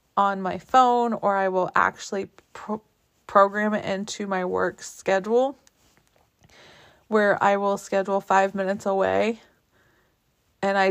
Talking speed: 120 wpm